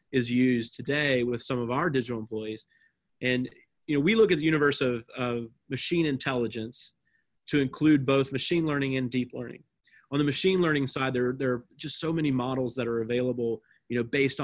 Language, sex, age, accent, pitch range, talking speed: English, male, 30-49, American, 125-145 Hz, 195 wpm